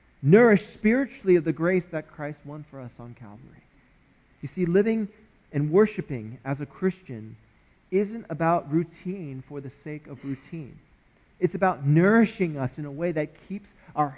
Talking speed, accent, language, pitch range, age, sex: 160 wpm, American, English, 130-165 Hz, 40-59, male